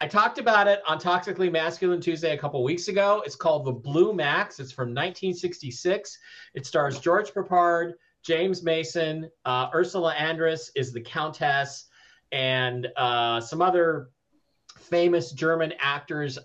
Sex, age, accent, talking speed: male, 40-59, American, 140 wpm